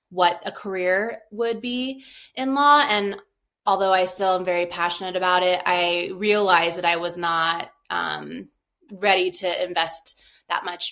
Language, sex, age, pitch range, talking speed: English, female, 20-39, 185-220 Hz, 155 wpm